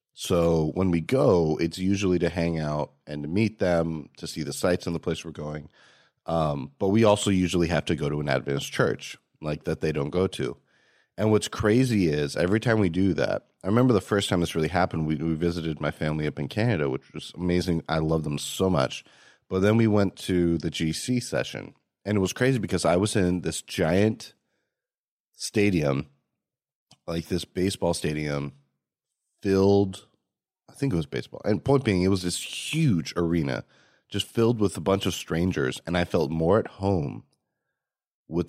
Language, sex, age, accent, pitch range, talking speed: English, male, 30-49, American, 80-100 Hz, 195 wpm